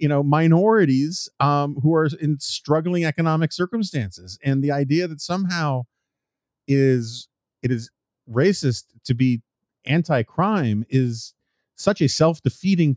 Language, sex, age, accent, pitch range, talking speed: English, male, 40-59, American, 105-140 Hz, 120 wpm